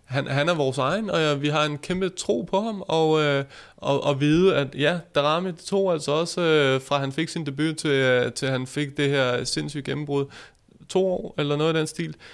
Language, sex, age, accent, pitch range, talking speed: Danish, male, 20-39, native, 135-165 Hz, 235 wpm